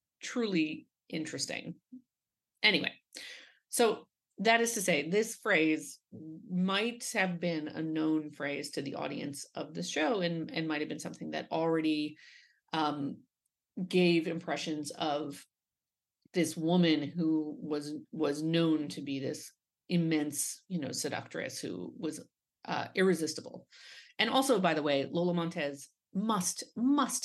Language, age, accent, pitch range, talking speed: English, 30-49, American, 155-195 Hz, 130 wpm